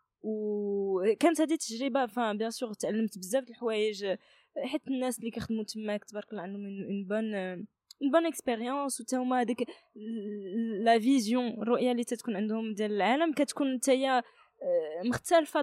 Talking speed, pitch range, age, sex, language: 155 wpm, 210-260 Hz, 20-39, female, Arabic